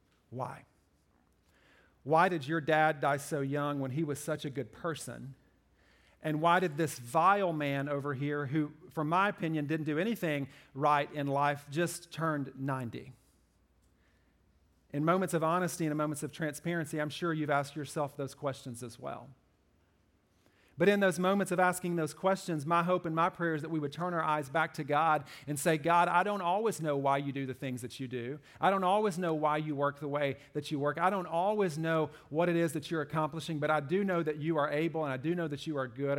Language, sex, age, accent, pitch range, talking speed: English, male, 40-59, American, 130-160 Hz, 215 wpm